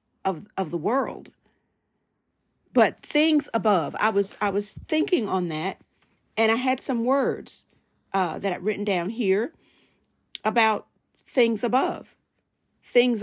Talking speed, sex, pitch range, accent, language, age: 130 wpm, female, 190-240 Hz, American, English, 40-59